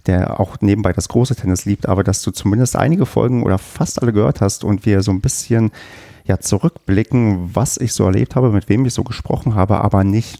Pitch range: 95-115 Hz